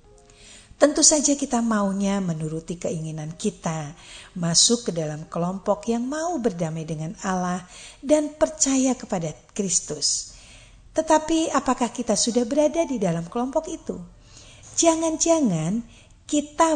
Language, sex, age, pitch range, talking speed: Indonesian, female, 50-69, 170-270 Hz, 110 wpm